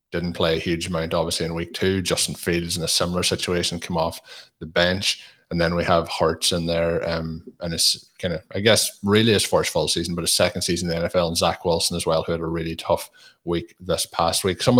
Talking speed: 245 wpm